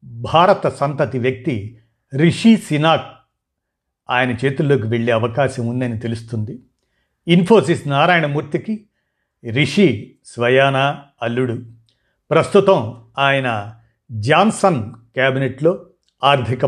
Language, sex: Telugu, male